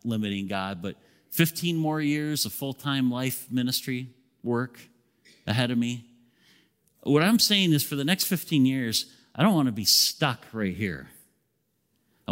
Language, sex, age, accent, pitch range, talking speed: English, male, 40-59, American, 130-180 Hz, 155 wpm